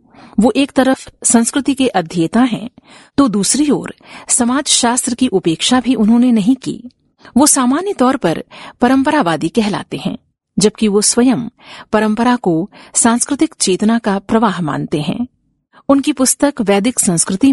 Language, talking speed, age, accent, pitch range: Hindi, 135 wpm, 50-69, native, 195-260 Hz